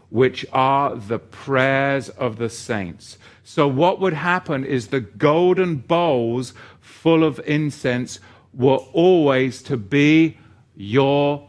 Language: English